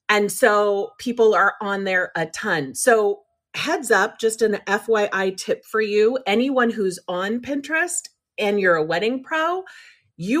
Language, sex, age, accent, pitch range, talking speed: English, female, 30-49, American, 200-265 Hz, 155 wpm